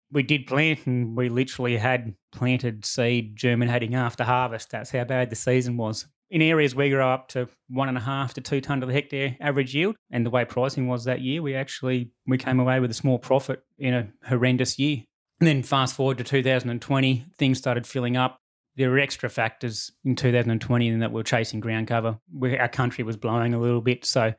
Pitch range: 120-135 Hz